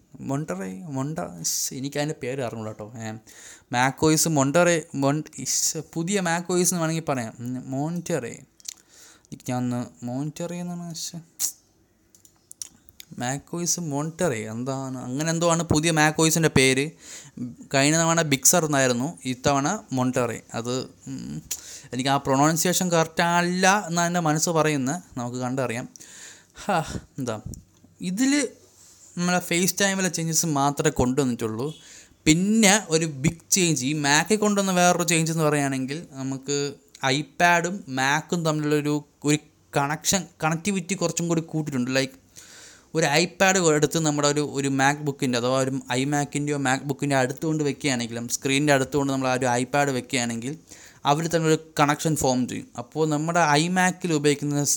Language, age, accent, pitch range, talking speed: Malayalam, 20-39, native, 130-165 Hz, 125 wpm